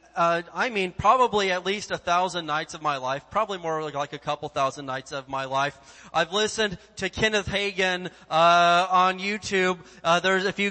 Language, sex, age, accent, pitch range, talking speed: English, male, 30-49, American, 160-205 Hz, 195 wpm